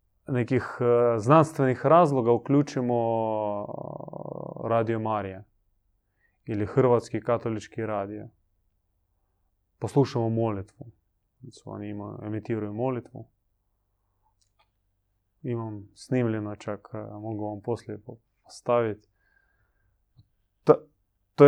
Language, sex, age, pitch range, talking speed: Croatian, male, 20-39, 105-130 Hz, 75 wpm